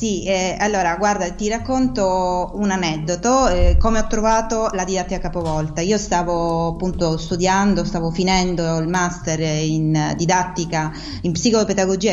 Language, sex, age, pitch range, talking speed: Italian, female, 30-49, 170-205 Hz, 135 wpm